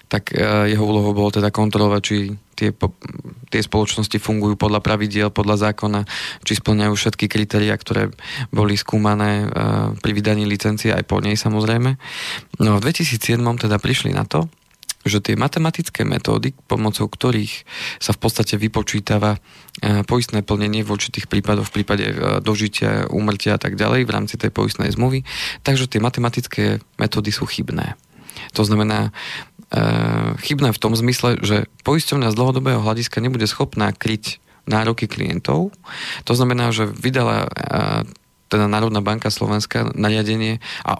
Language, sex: Slovak, male